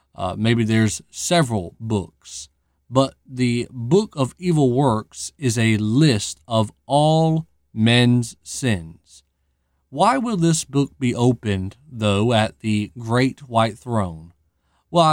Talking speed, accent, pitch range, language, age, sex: 125 wpm, American, 105-165 Hz, English, 40-59, male